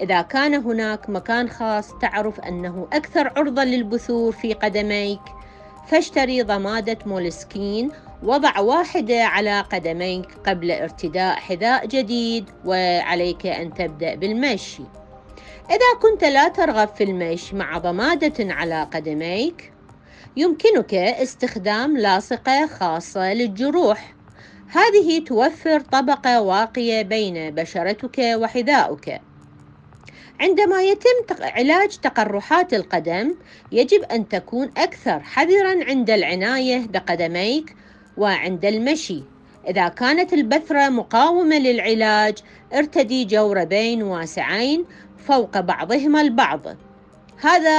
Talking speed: 95 wpm